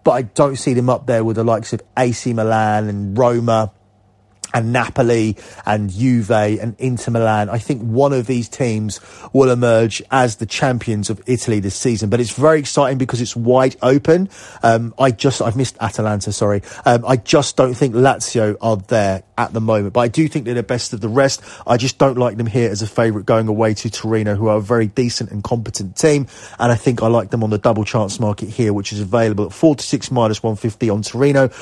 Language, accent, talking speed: English, British, 220 wpm